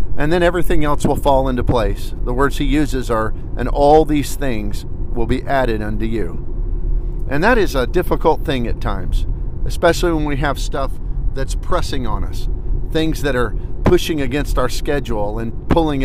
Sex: male